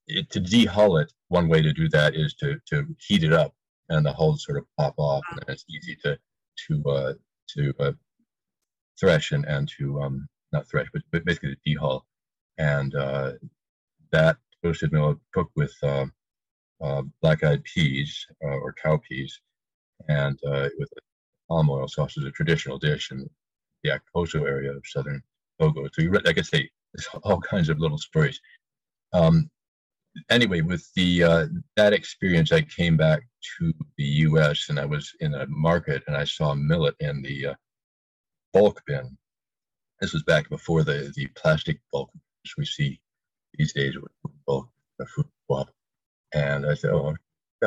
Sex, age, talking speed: male, 40-59, 170 wpm